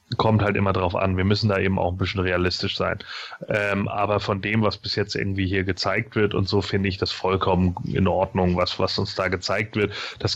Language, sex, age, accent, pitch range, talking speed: German, male, 30-49, German, 95-110 Hz, 230 wpm